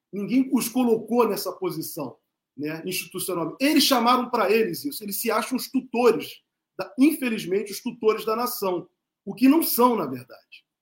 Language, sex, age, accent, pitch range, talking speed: Portuguese, male, 40-59, Brazilian, 190-245 Hz, 160 wpm